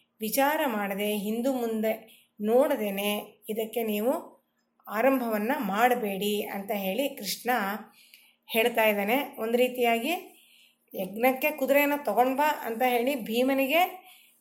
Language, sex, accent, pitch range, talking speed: Kannada, female, native, 215-265 Hz, 85 wpm